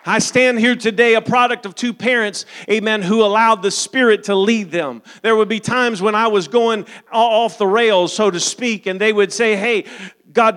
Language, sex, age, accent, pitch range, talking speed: English, male, 40-59, American, 190-225 Hz, 210 wpm